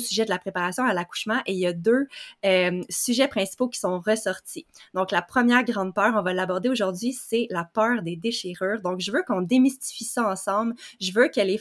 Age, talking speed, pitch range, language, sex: 20-39, 215 wpm, 190-230 Hz, French, female